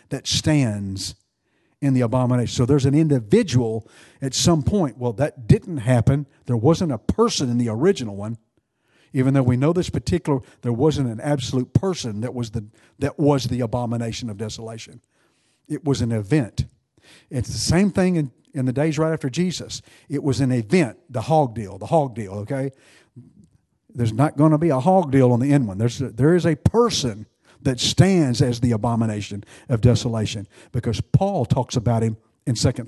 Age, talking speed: 50-69, 185 wpm